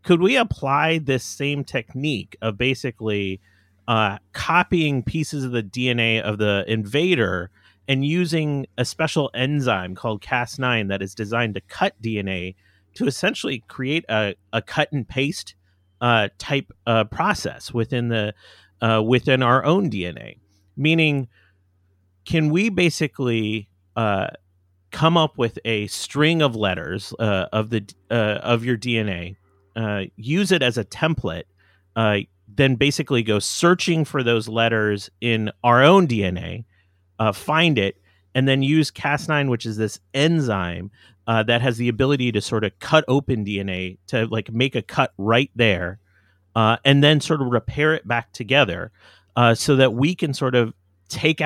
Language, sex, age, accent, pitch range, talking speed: English, male, 30-49, American, 100-140 Hz, 155 wpm